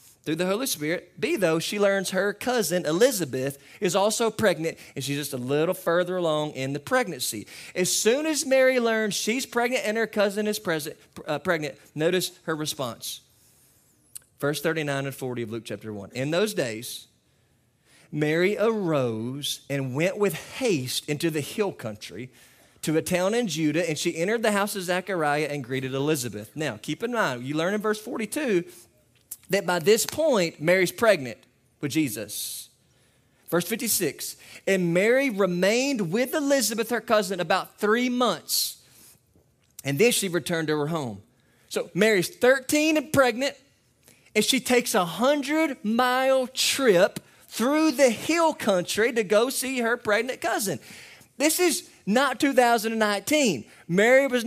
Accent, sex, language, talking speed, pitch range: American, male, English, 155 wpm, 150-230 Hz